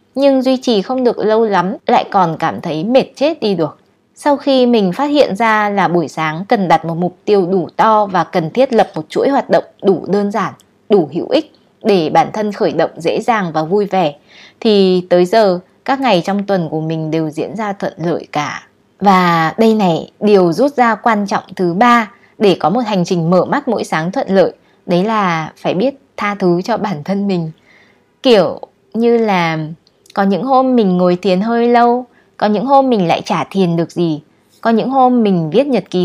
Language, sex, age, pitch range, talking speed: Vietnamese, female, 20-39, 175-230 Hz, 215 wpm